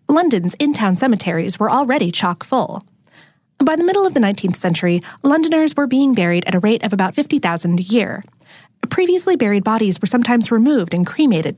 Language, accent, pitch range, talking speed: English, American, 185-275 Hz, 170 wpm